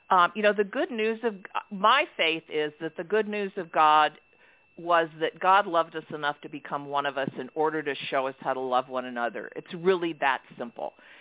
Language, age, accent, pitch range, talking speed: English, 50-69, American, 160-215 Hz, 220 wpm